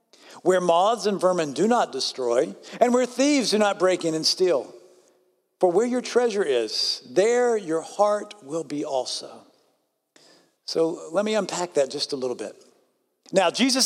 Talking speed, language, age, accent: 165 wpm, English, 50-69, American